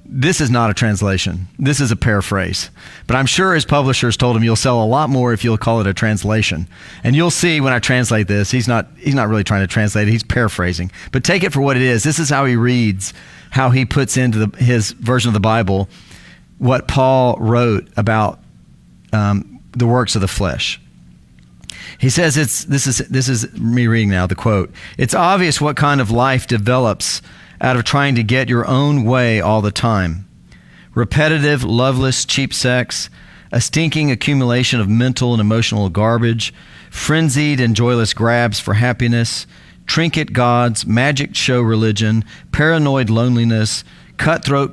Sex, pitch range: male, 110-130 Hz